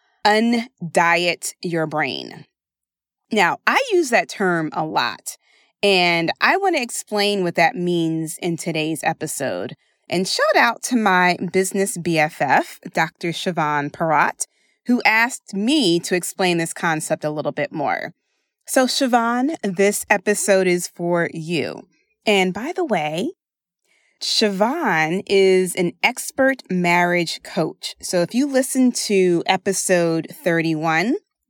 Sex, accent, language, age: female, American, English, 20-39